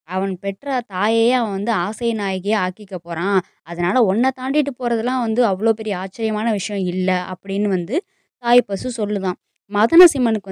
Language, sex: Tamil, female